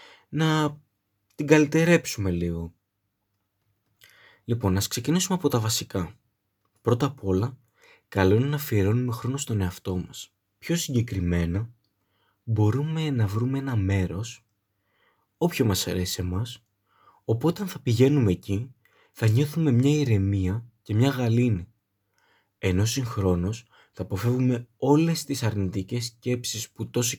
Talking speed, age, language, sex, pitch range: 120 wpm, 20-39, Greek, male, 100-130 Hz